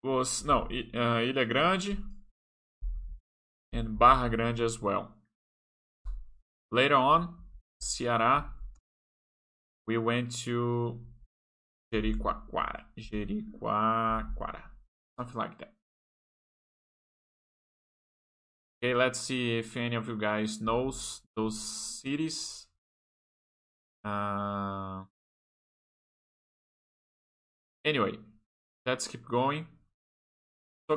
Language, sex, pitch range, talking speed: Portuguese, male, 75-120 Hz, 75 wpm